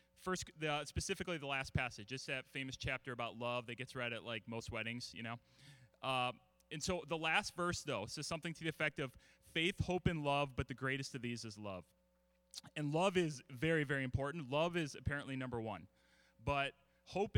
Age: 30-49